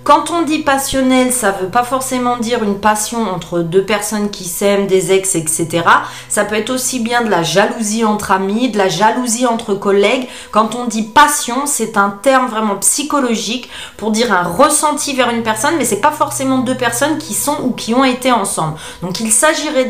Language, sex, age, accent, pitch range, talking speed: French, female, 30-49, French, 200-270 Hz, 205 wpm